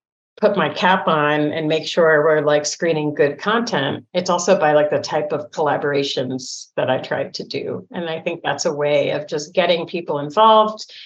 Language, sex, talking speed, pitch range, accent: English, female, 195 wpm, 160-195 Hz, American